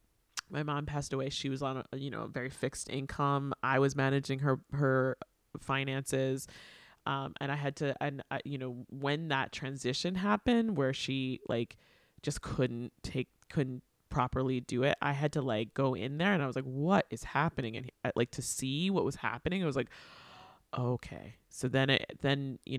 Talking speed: 195 wpm